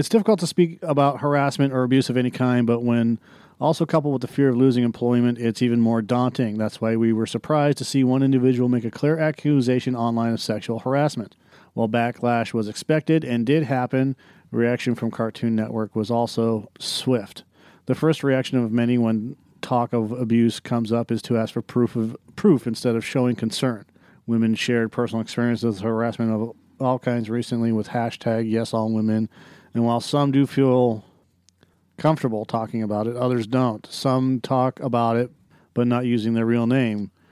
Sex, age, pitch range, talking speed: male, 40-59, 115-130 Hz, 180 wpm